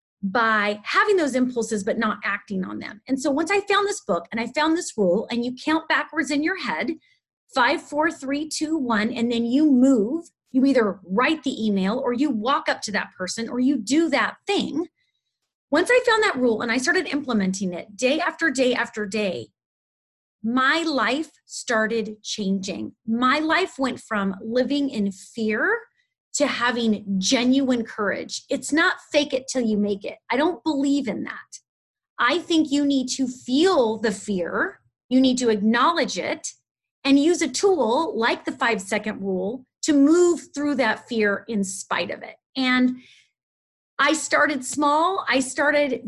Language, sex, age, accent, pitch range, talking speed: English, female, 30-49, American, 225-305 Hz, 175 wpm